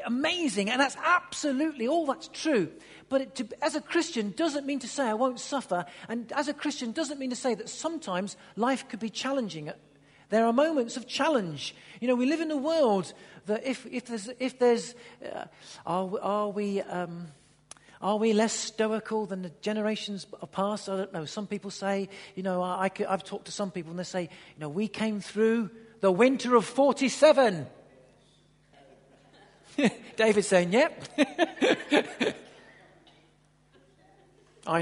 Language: English